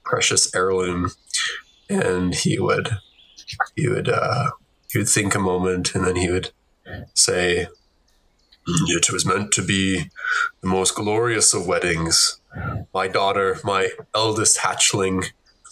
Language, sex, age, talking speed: English, male, 20-39, 125 wpm